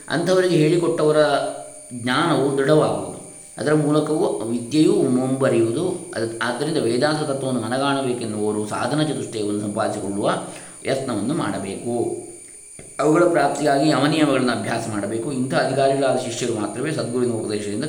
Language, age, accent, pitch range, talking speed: Kannada, 20-39, native, 120-155 Hz, 95 wpm